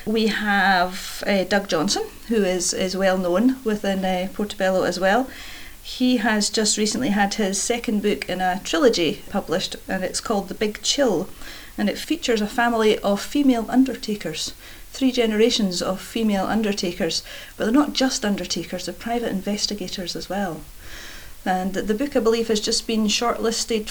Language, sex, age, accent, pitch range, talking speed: English, female, 40-59, British, 195-240 Hz, 165 wpm